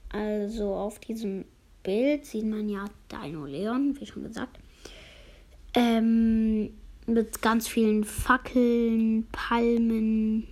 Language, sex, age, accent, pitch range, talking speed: German, female, 20-39, German, 210-250 Hz, 105 wpm